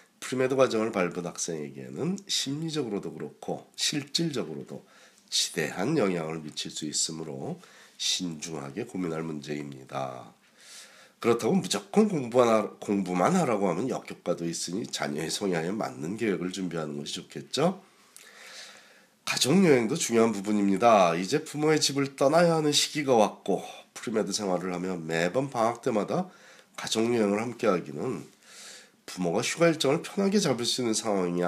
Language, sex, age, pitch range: Korean, male, 40-59, 85-140 Hz